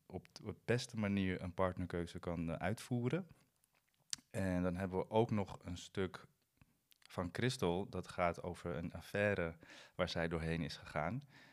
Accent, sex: Dutch, male